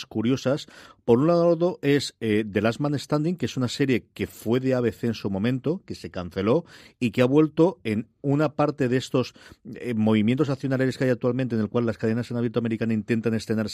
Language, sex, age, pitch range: Spanish, male, 40-59, 100-130 Hz